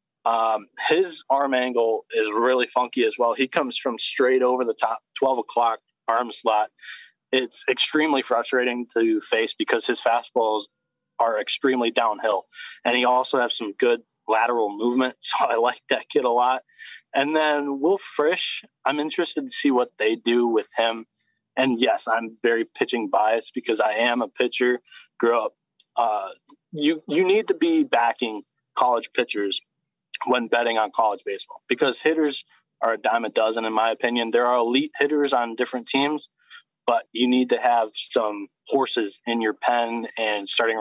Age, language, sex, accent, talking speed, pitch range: 20-39, English, male, American, 170 wpm, 115-155 Hz